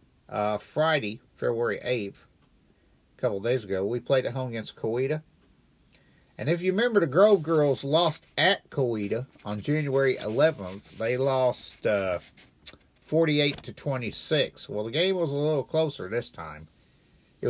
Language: English